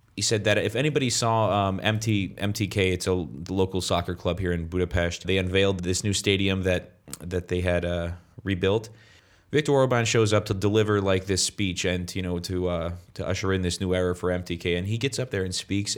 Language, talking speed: English, 215 wpm